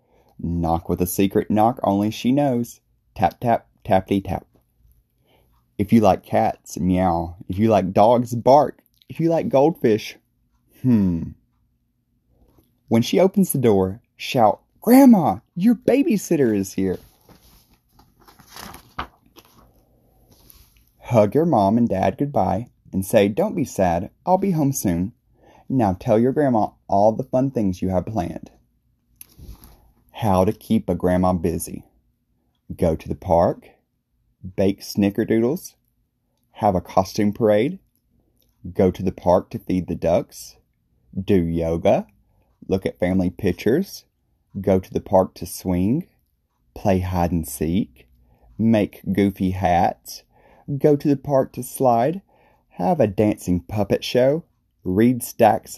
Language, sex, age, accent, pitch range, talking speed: English, male, 30-49, American, 90-120 Hz, 130 wpm